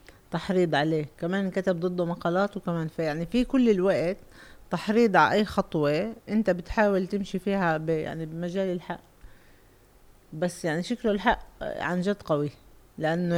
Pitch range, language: 155-205 Hz, Arabic